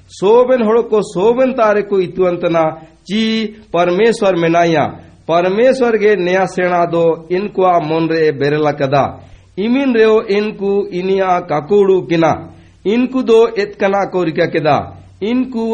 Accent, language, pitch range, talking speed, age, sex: native, Hindi, 165-215 Hz, 150 wpm, 60-79, male